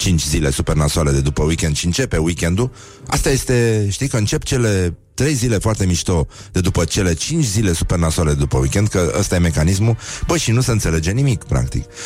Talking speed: 205 wpm